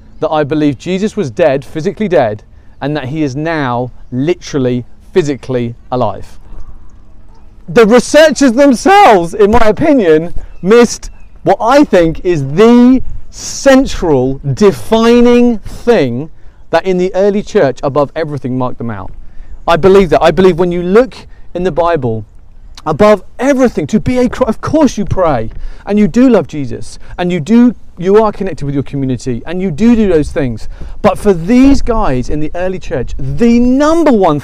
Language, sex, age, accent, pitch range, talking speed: English, male, 40-59, British, 130-215 Hz, 160 wpm